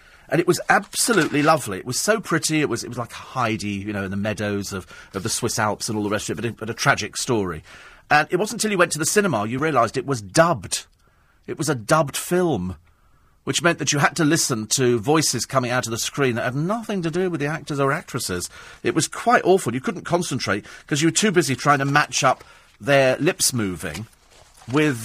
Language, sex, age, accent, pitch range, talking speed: English, male, 40-59, British, 120-160 Hz, 240 wpm